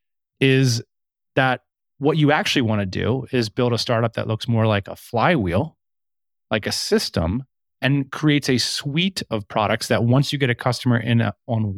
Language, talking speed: English, 180 wpm